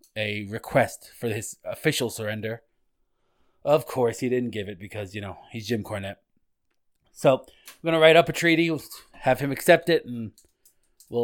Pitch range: 105-140 Hz